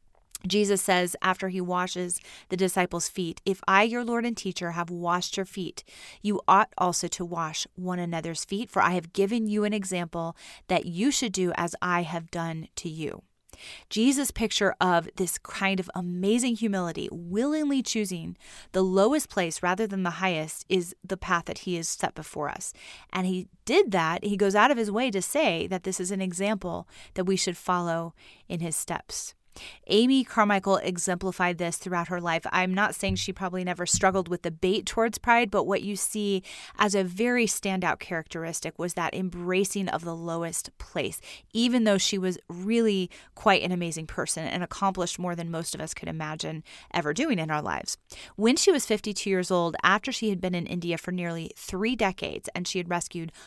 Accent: American